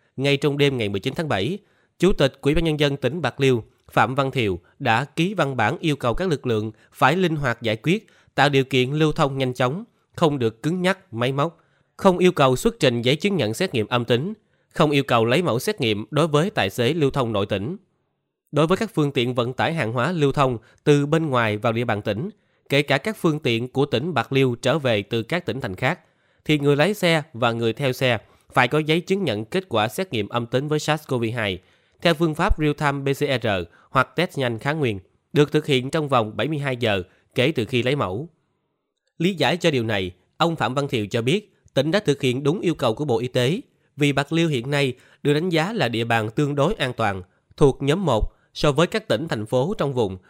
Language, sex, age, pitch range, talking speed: Vietnamese, male, 20-39, 120-155 Hz, 235 wpm